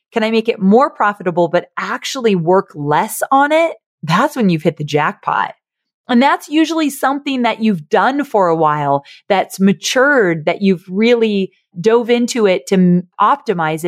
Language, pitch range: English, 170-230 Hz